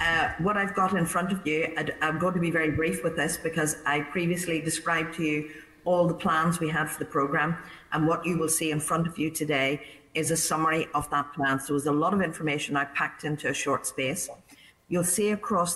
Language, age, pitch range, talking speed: English, 50-69, 145-165 Hz, 235 wpm